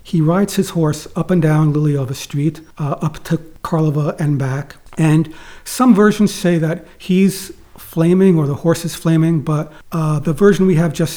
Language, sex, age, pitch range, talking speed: English, male, 40-59, 150-185 Hz, 185 wpm